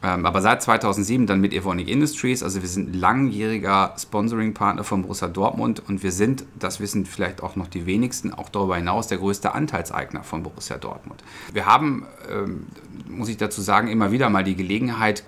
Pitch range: 95-110 Hz